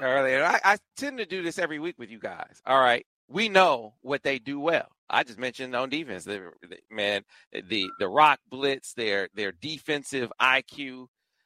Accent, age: American, 40-59